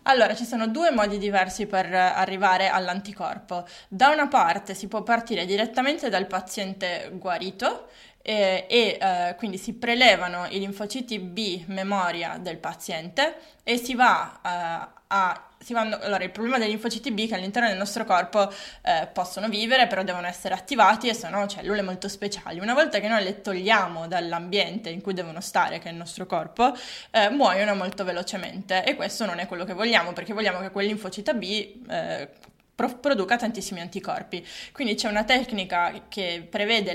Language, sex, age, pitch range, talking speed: Italian, female, 20-39, 185-225 Hz, 165 wpm